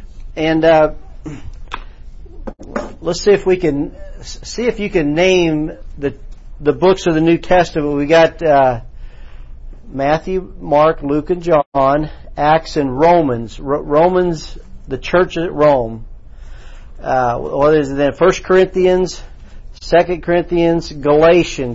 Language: English